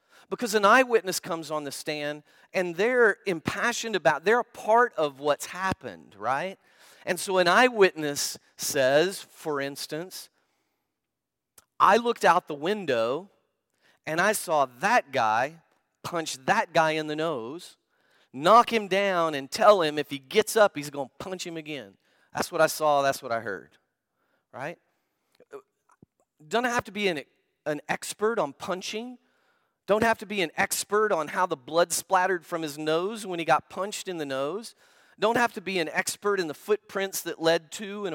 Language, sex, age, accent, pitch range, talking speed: English, male, 40-59, American, 130-195 Hz, 175 wpm